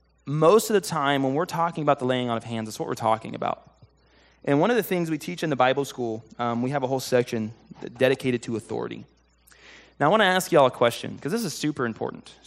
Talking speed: 250 wpm